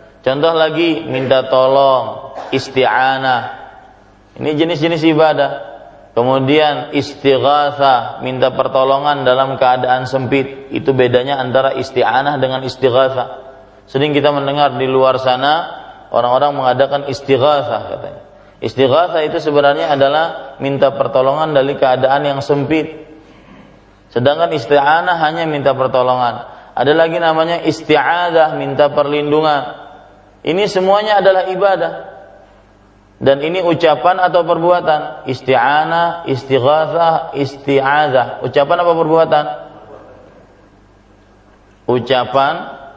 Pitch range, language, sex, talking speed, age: 130-160 Hz, Malay, male, 95 wpm, 30-49